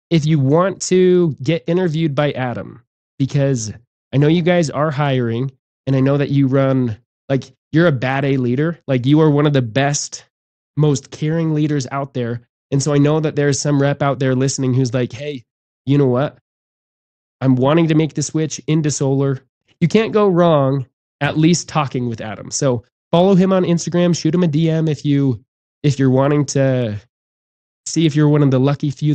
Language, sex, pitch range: English, male, 135-165 Hz